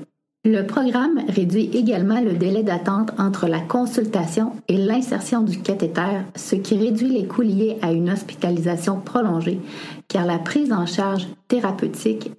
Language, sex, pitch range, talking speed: French, female, 175-220 Hz, 145 wpm